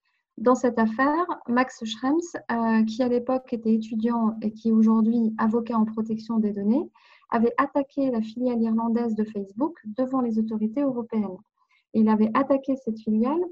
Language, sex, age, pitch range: French, female, 30-49, 225-270 Hz